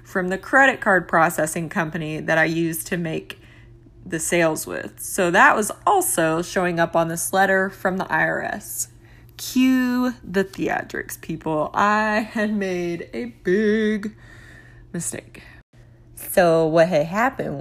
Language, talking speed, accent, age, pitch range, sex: English, 135 wpm, American, 20-39, 155-215 Hz, female